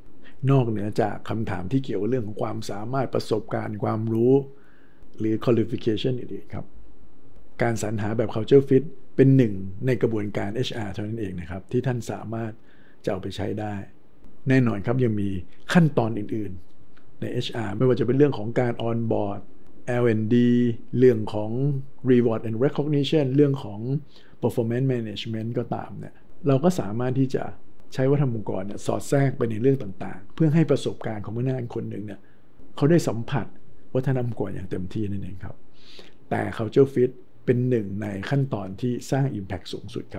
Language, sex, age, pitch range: Thai, male, 60-79, 100-130 Hz